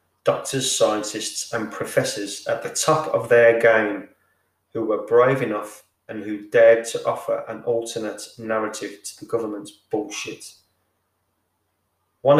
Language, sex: English, male